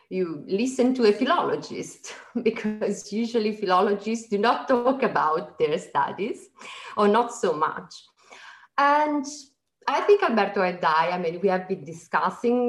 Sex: female